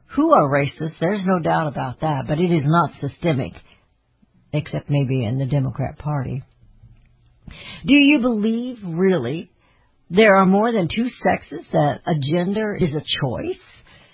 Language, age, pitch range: English, 60-79, 145-220 Hz